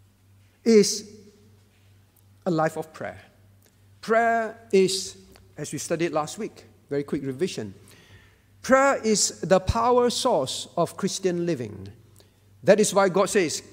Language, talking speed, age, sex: English, 120 wpm, 50-69, male